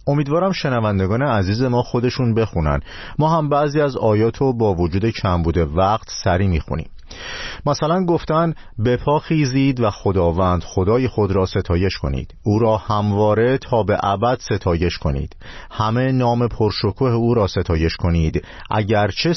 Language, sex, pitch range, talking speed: Persian, male, 85-120 Hz, 135 wpm